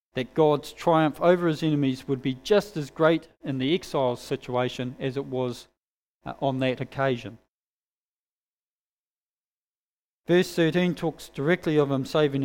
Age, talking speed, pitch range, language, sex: 40-59, 140 wpm, 135-170 Hz, English, male